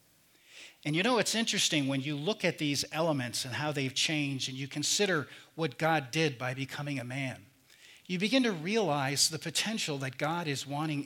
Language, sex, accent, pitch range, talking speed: English, male, American, 135-160 Hz, 190 wpm